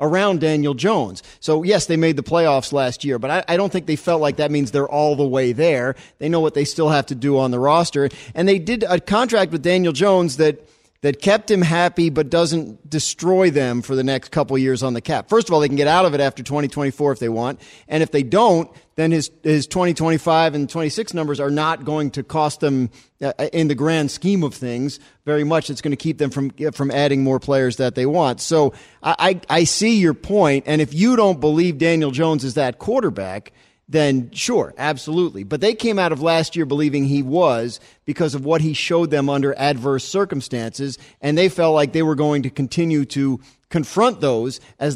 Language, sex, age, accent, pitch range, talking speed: English, male, 40-59, American, 140-165 Hz, 225 wpm